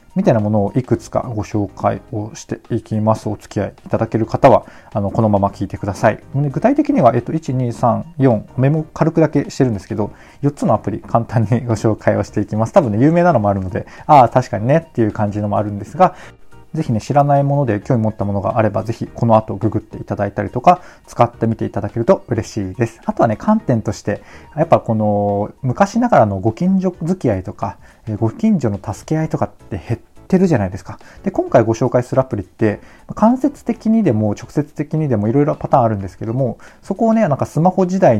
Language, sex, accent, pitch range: Japanese, male, native, 105-145 Hz